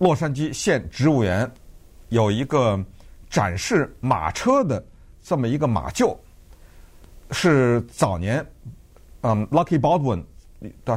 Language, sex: Chinese, male